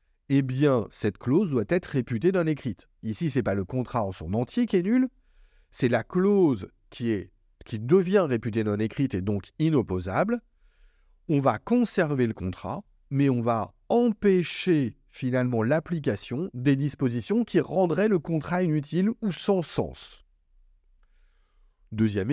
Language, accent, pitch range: French, French, 110-165 Hz